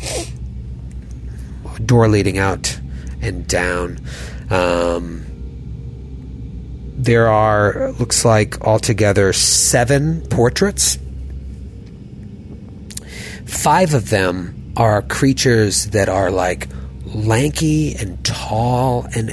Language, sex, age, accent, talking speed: English, male, 30-49, American, 80 wpm